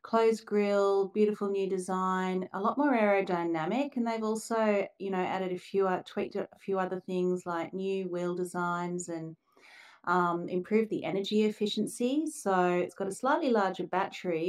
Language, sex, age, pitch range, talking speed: English, female, 30-49, 175-205 Hz, 165 wpm